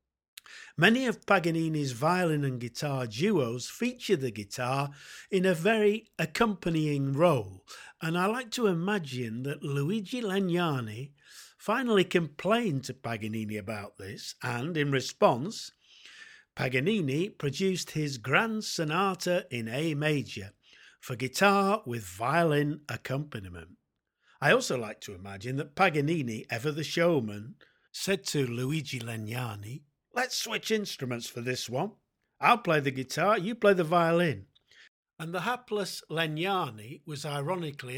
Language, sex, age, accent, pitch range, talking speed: English, male, 50-69, British, 130-190 Hz, 125 wpm